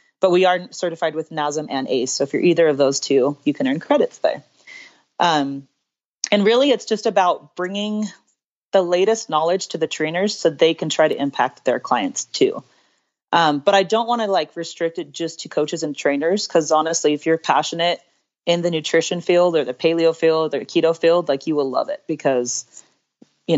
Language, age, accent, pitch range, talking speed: English, 30-49, American, 150-190 Hz, 200 wpm